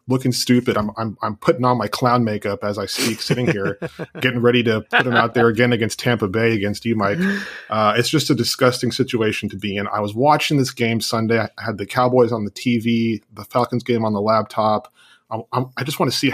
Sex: male